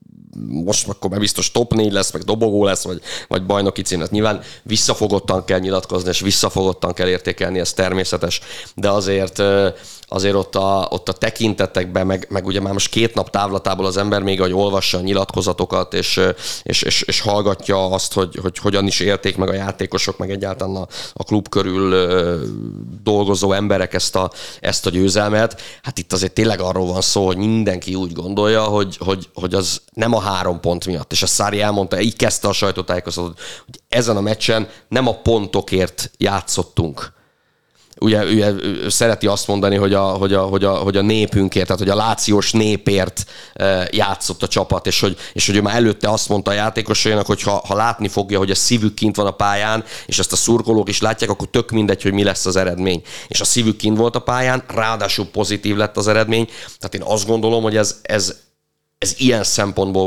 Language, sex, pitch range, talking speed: Hungarian, male, 95-110 Hz, 180 wpm